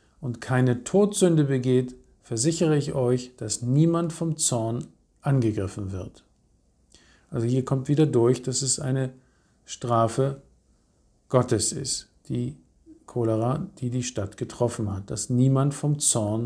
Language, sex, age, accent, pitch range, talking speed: German, male, 50-69, German, 115-140 Hz, 130 wpm